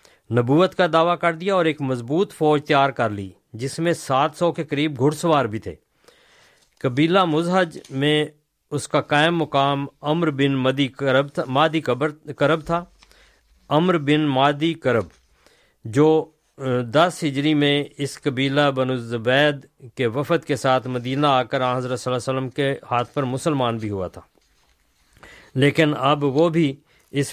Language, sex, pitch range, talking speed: Urdu, male, 130-160 Hz, 160 wpm